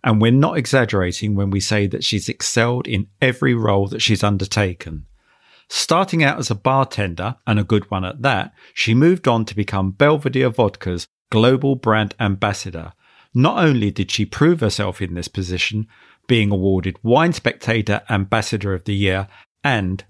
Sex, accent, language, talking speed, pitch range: male, British, English, 165 wpm, 100-125 Hz